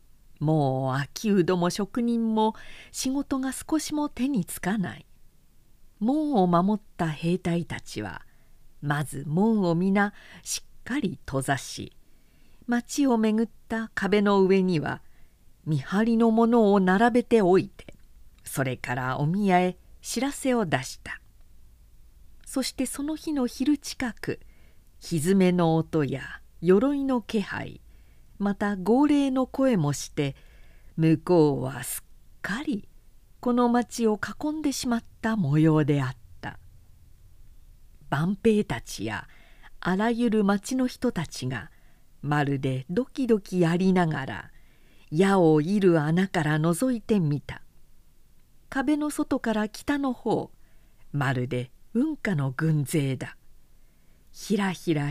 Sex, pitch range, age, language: female, 135-230 Hz, 50-69, Japanese